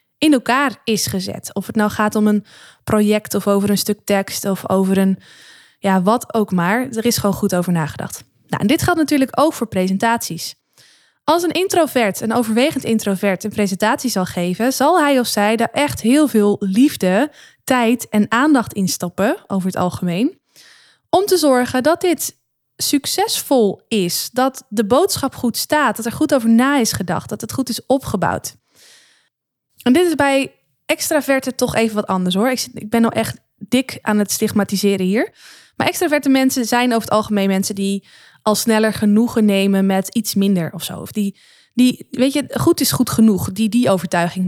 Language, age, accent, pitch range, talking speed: Dutch, 20-39, Dutch, 200-275 Hz, 185 wpm